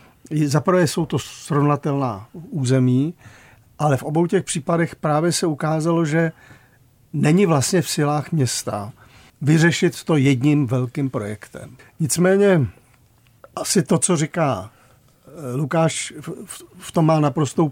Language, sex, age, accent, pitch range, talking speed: Czech, male, 50-69, native, 135-165 Hz, 115 wpm